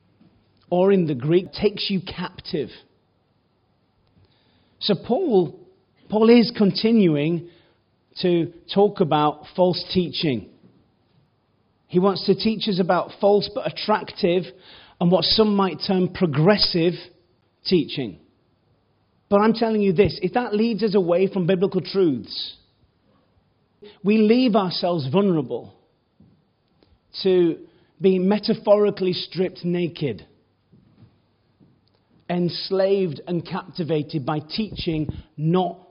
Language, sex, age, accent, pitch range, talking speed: English, male, 30-49, British, 150-190 Hz, 100 wpm